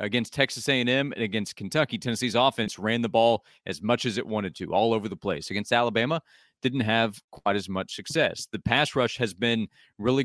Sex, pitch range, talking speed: male, 105-125 Hz, 205 wpm